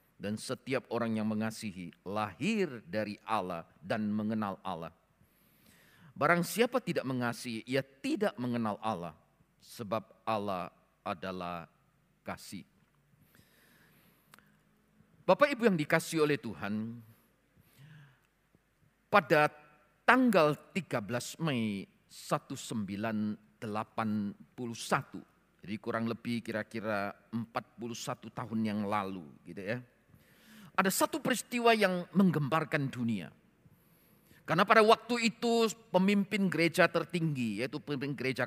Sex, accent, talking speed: male, native, 90 wpm